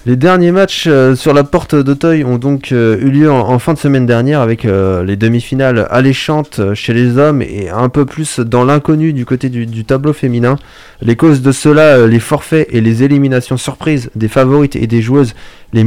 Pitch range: 120-145 Hz